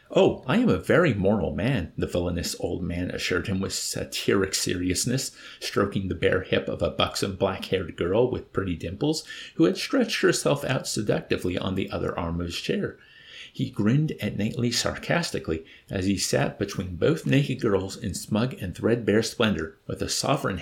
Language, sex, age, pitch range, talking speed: English, male, 50-69, 90-135 Hz, 180 wpm